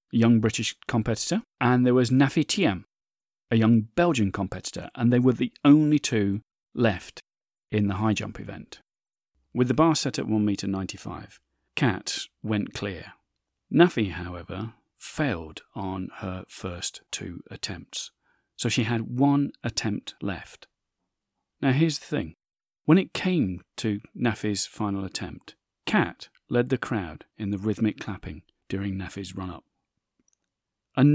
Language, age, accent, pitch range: English, 40-59, British, 100-130 Hz